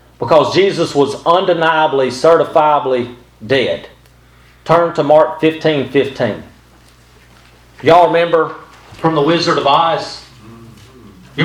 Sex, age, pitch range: male, 40-59, 150-195 Hz